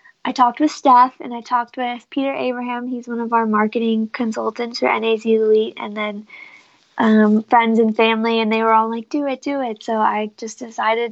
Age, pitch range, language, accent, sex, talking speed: 20-39, 220-250 Hz, English, American, female, 205 wpm